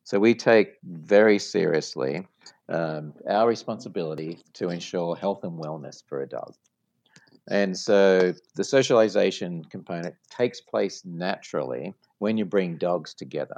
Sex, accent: male, Australian